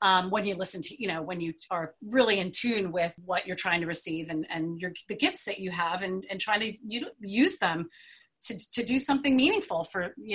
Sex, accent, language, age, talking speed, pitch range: female, American, English, 30-49, 225 wpm, 195-250 Hz